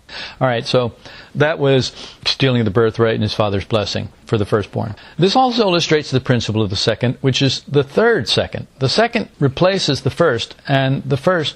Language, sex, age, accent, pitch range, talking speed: English, male, 50-69, American, 120-170 Hz, 180 wpm